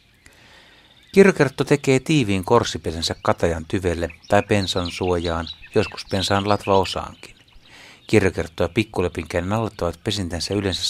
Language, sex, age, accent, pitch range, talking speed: Finnish, male, 60-79, native, 85-105 Hz, 100 wpm